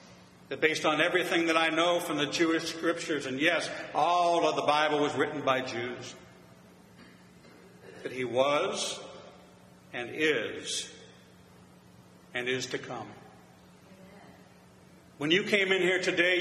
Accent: American